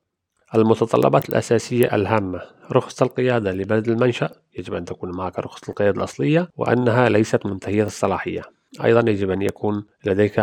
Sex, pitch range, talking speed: male, 100-115 Hz, 130 wpm